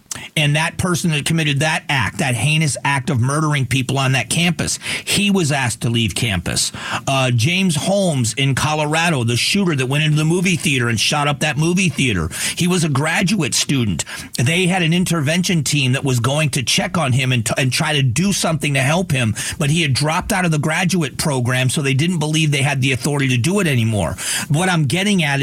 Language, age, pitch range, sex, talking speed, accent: English, 40-59, 130-165 Hz, male, 215 wpm, American